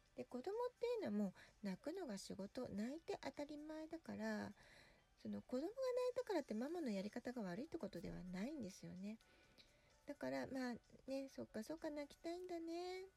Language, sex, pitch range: Japanese, female, 200-305 Hz